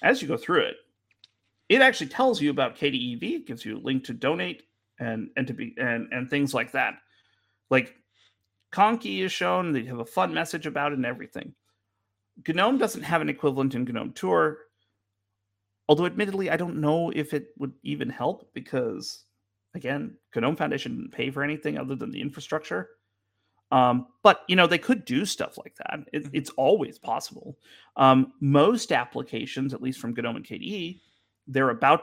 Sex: male